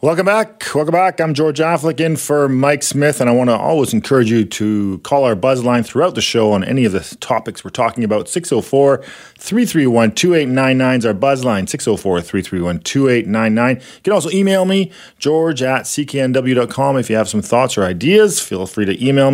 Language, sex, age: English, male, 40-59